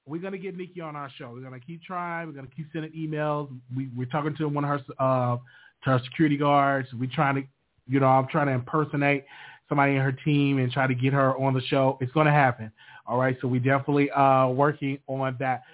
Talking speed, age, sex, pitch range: 235 wpm, 30-49, male, 135-175 Hz